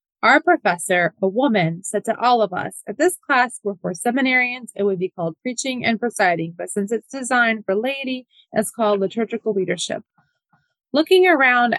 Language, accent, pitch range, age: English, American, 200-255 Hz, 20-39